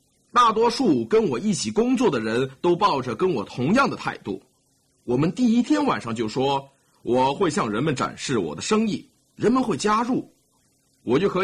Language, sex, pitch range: Chinese, male, 140-235 Hz